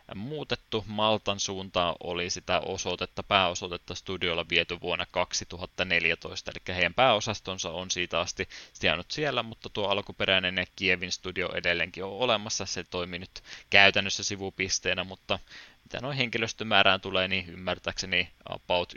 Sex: male